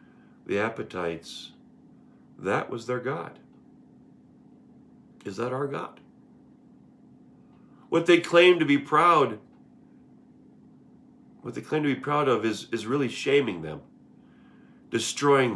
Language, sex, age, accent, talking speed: English, male, 40-59, American, 110 wpm